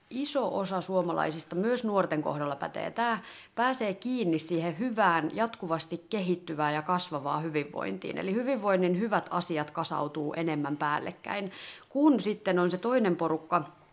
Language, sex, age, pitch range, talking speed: Finnish, female, 30-49, 160-205 Hz, 125 wpm